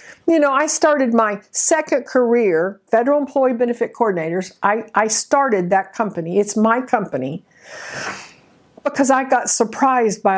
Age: 50-69